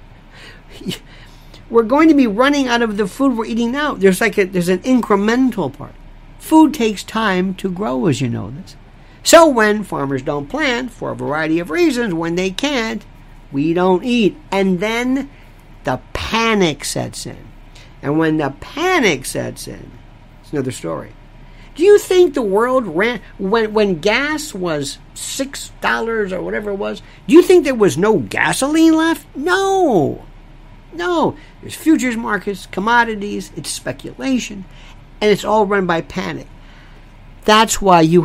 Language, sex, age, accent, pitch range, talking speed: English, male, 50-69, American, 145-225 Hz, 155 wpm